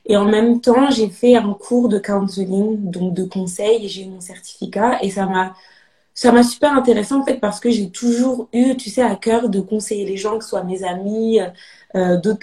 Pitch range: 190-235 Hz